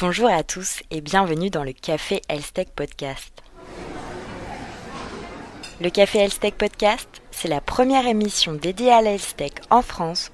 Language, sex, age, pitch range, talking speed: French, female, 20-39, 170-225 Hz, 135 wpm